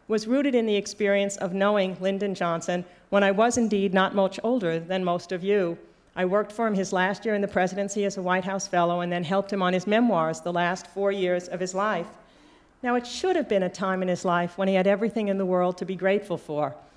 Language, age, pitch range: English, 50-69, 190-225 Hz